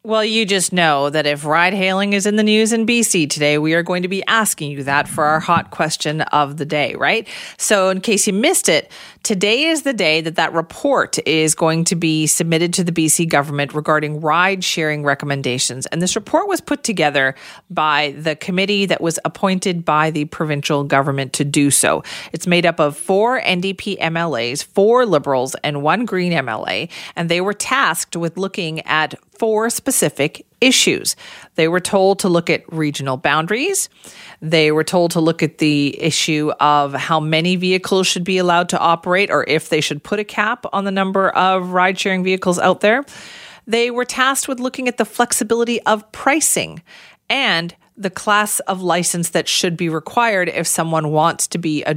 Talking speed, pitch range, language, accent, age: 190 wpm, 155-205 Hz, English, American, 40-59